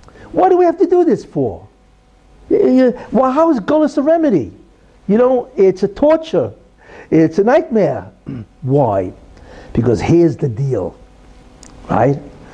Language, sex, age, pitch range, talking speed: English, male, 60-79, 155-255 Hz, 135 wpm